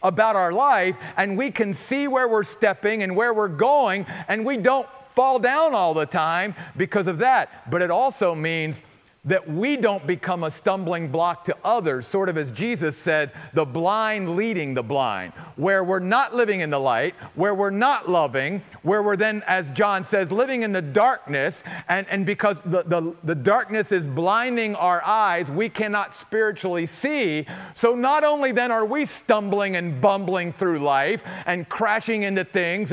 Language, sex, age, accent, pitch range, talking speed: English, male, 50-69, American, 180-245 Hz, 180 wpm